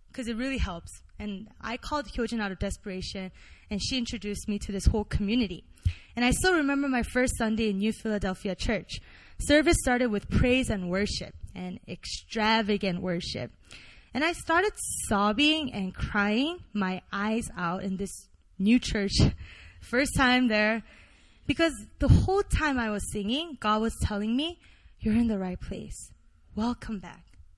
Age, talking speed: 20-39, 160 wpm